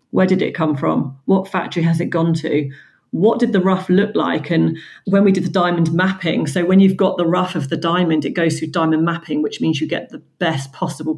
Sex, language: female, English